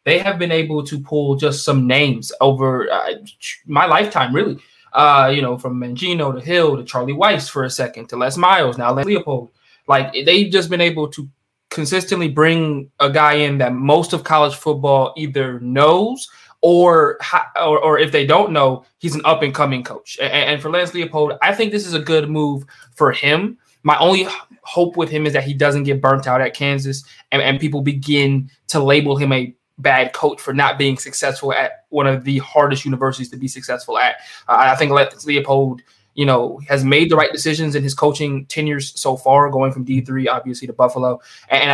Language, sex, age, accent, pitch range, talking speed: English, male, 20-39, American, 135-155 Hz, 205 wpm